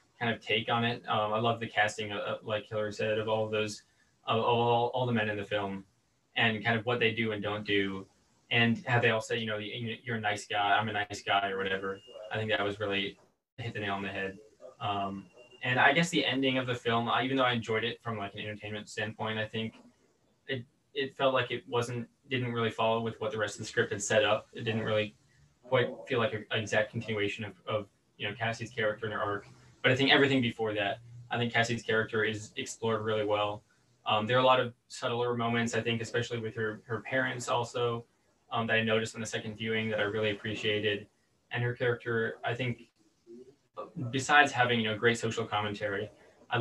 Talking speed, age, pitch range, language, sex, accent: 230 wpm, 20-39, 105-120 Hz, English, male, American